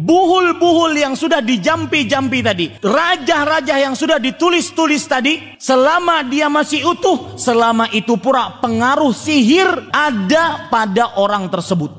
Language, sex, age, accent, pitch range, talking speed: Indonesian, male, 30-49, native, 165-265 Hz, 115 wpm